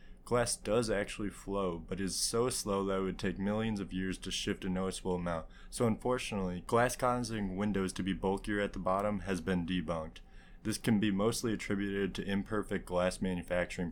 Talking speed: 185 wpm